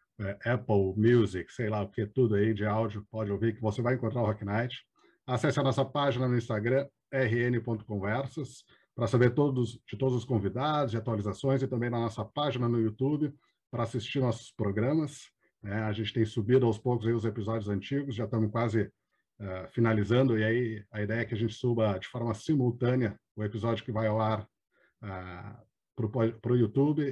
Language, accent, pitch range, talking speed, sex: Portuguese, Brazilian, 110-130 Hz, 185 wpm, male